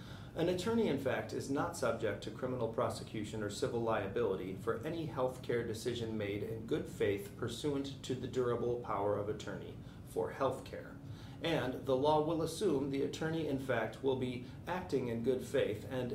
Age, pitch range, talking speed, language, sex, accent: 40-59, 120-150 Hz, 180 wpm, English, male, American